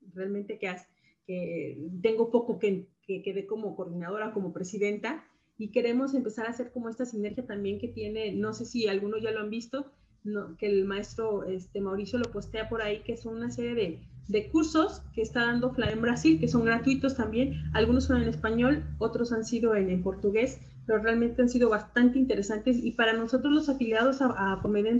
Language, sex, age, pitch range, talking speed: Spanish, female, 30-49, 205-255 Hz, 190 wpm